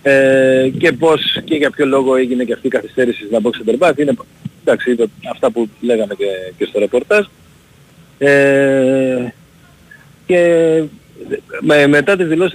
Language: Greek